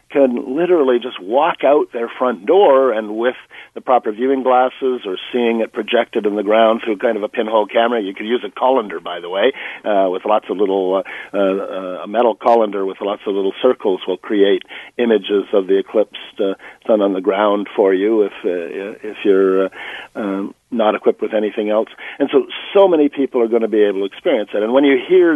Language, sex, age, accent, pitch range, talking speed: English, male, 50-69, American, 100-135 Hz, 215 wpm